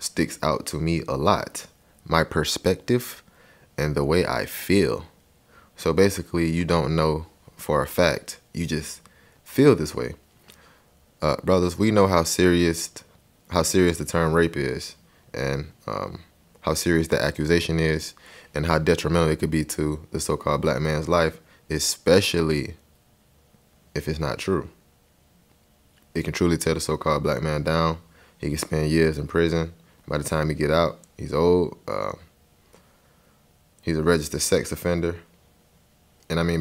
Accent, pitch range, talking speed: American, 75-85 Hz, 155 wpm